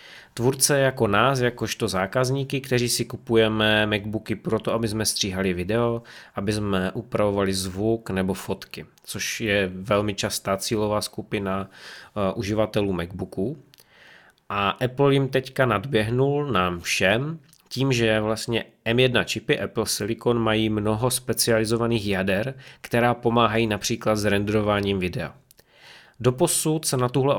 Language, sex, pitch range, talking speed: Czech, male, 105-125 Hz, 125 wpm